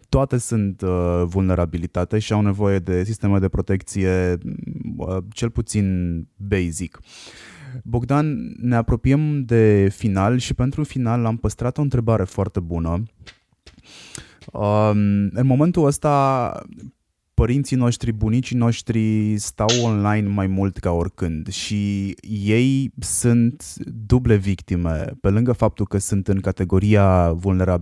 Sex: male